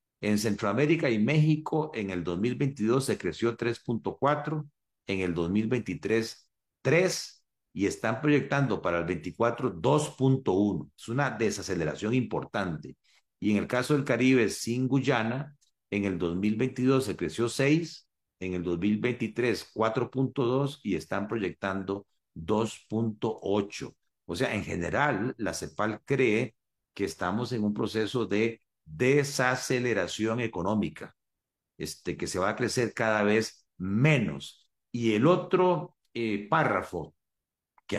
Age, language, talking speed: 50-69, Spanish, 120 wpm